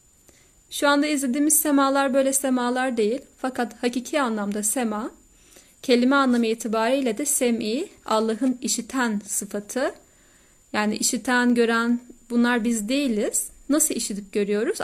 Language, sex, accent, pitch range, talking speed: Turkish, female, native, 215-275 Hz, 115 wpm